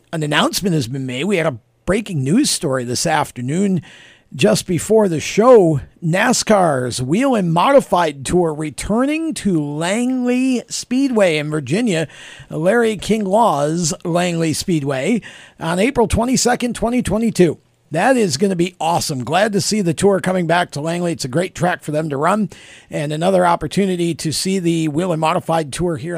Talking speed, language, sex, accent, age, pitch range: 165 wpm, English, male, American, 50-69, 160-205 Hz